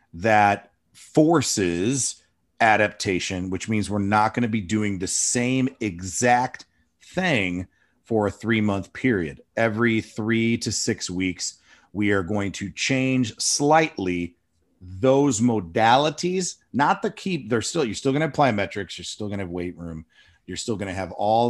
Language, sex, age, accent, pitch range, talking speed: English, male, 40-59, American, 90-115 Hz, 155 wpm